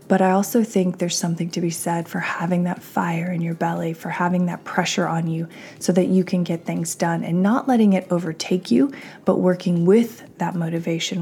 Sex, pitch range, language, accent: female, 170-190 Hz, English, American